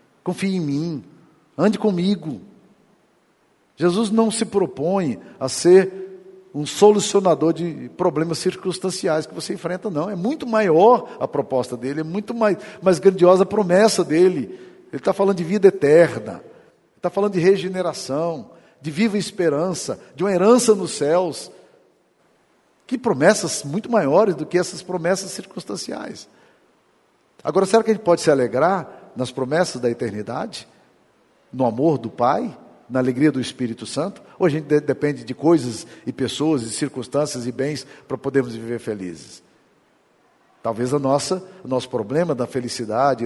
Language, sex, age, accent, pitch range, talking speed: Portuguese, male, 50-69, Brazilian, 130-185 Hz, 145 wpm